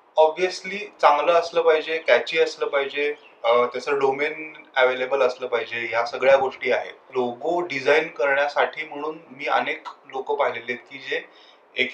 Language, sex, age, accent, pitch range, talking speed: Marathi, male, 30-49, native, 130-170 Hz, 140 wpm